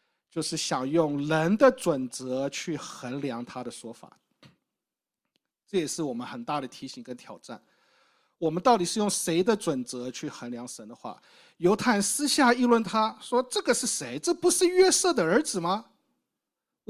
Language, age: Chinese, 50-69